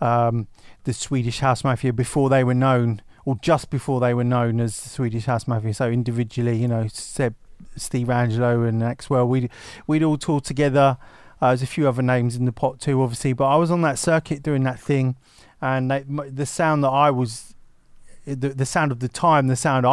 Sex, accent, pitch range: male, British, 125-140 Hz